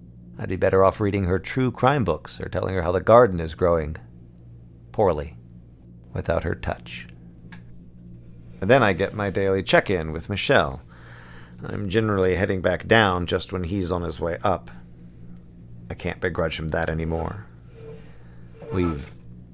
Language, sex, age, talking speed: English, male, 40-59, 150 wpm